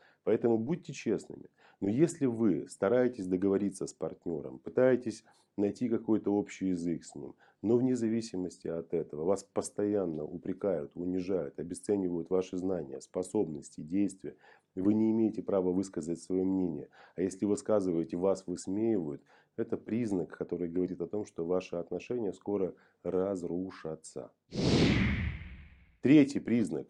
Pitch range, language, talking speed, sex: 90-110 Hz, Russian, 125 wpm, male